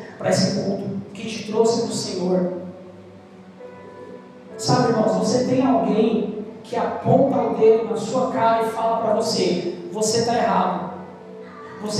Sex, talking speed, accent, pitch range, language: male, 140 wpm, Brazilian, 185-235 Hz, Portuguese